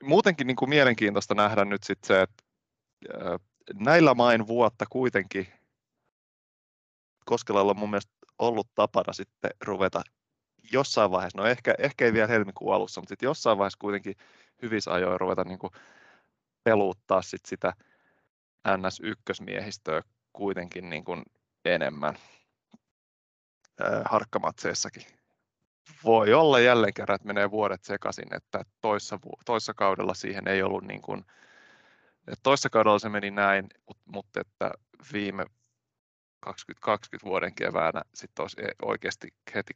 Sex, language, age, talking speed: male, Finnish, 20-39, 125 wpm